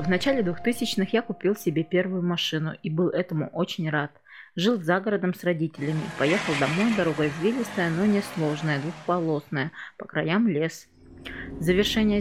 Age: 20-39